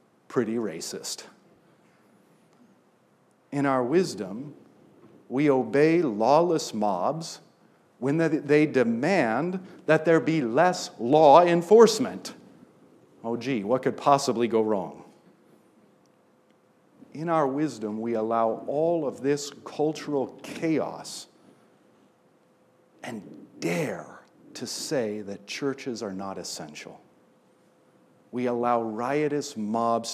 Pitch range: 115-165 Hz